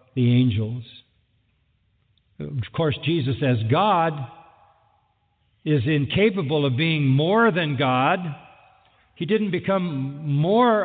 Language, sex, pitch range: English, male, 130-185 Hz